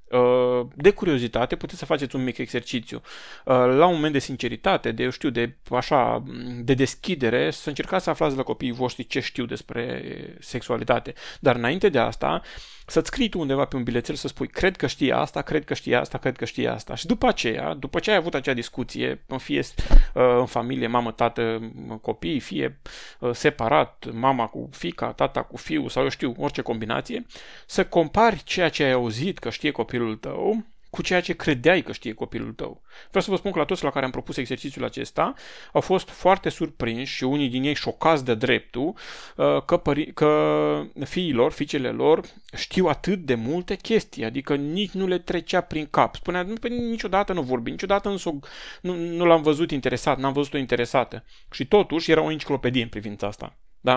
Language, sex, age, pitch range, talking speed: Romanian, male, 30-49, 120-170 Hz, 190 wpm